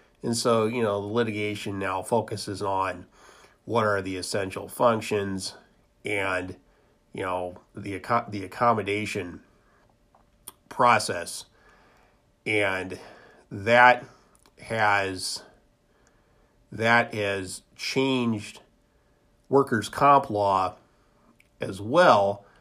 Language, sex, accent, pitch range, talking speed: English, male, American, 100-120 Hz, 85 wpm